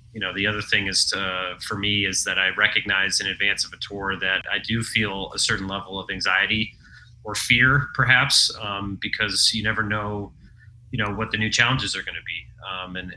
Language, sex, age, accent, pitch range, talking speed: English, male, 30-49, American, 95-110 Hz, 210 wpm